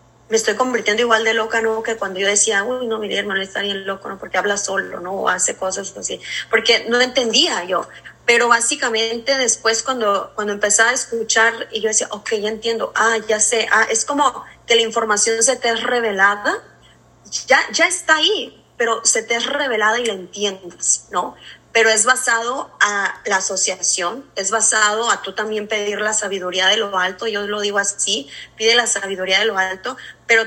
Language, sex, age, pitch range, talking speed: Spanish, female, 20-39, 195-235 Hz, 195 wpm